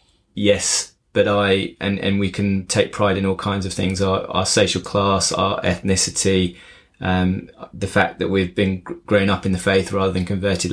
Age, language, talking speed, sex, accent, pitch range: 20-39, English, 190 wpm, male, British, 95-105 Hz